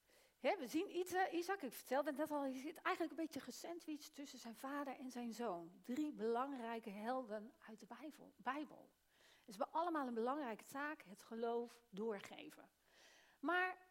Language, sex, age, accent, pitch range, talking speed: Dutch, female, 40-59, Dutch, 235-320 Hz, 170 wpm